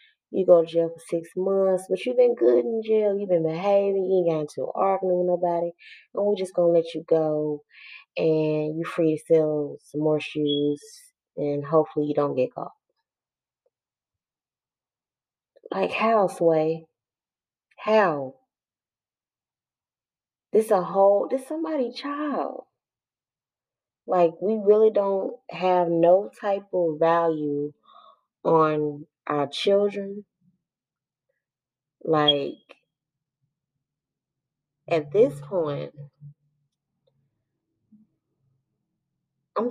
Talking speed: 105 wpm